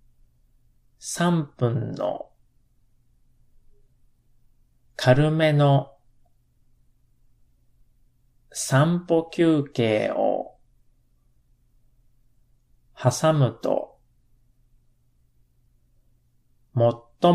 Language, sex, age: Japanese, male, 40-59